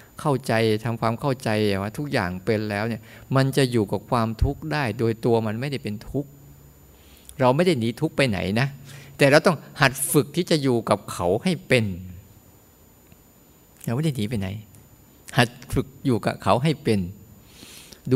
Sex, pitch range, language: male, 105-140 Hz, Thai